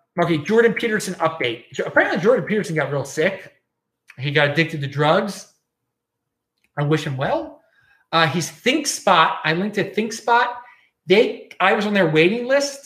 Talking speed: 160 wpm